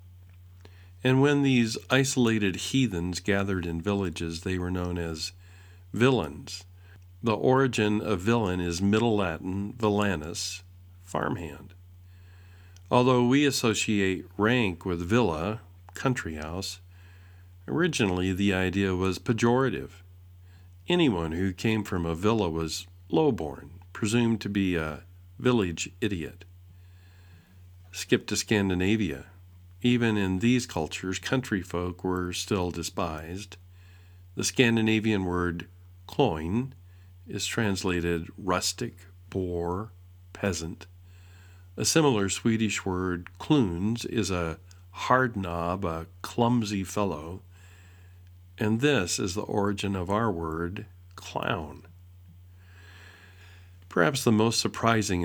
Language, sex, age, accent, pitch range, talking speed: English, male, 50-69, American, 90-105 Hz, 105 wpm